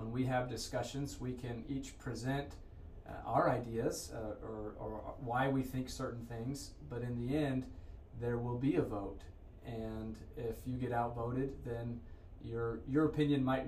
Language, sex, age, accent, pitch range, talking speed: English, male, 30-49, American, 115-130 Hz, 165 wpm